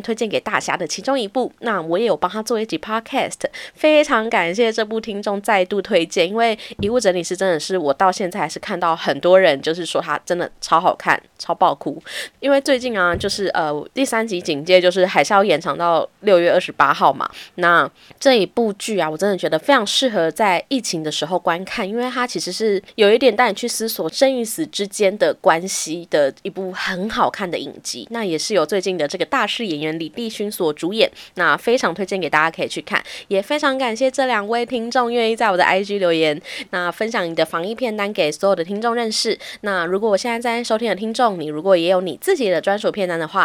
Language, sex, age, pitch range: Chinese, female, 20-39, 175-235 Hz